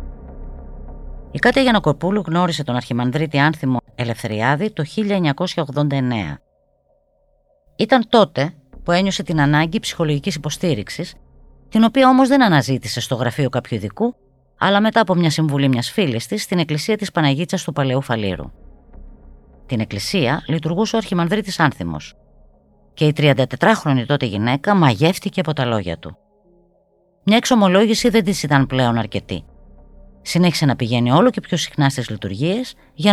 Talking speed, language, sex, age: 140 wpm, Greek, female, 20-39